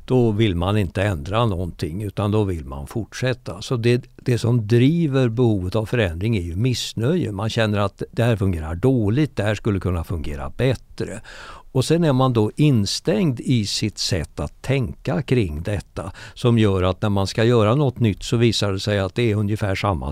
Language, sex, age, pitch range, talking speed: Swedish, male, 60-79, 105-130 Hz, 195 wpm